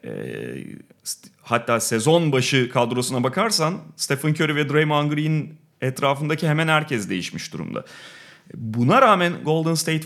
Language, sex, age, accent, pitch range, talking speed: Turkish, male, 30-49, native, 120-155 Hz, 115 wpm